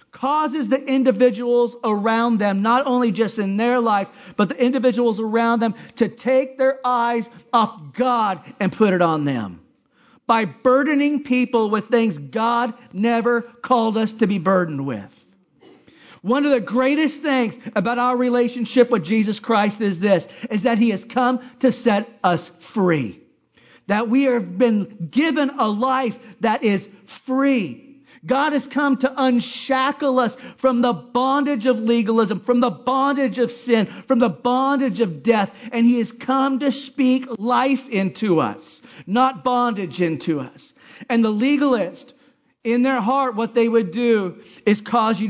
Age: 40-59